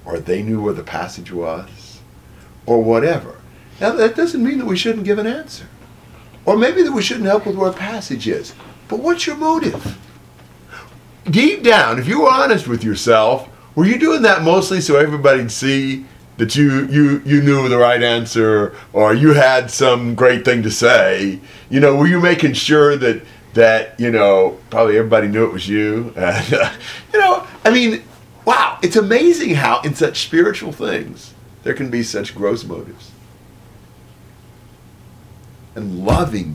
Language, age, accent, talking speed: English, 50-69, American, 170 wpm